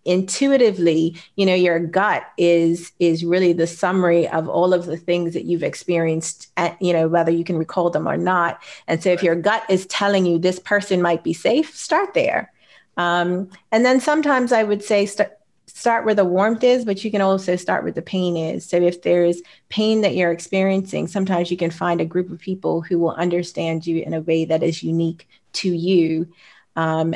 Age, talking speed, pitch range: 30-49, 205 wpm, 170-195 Hz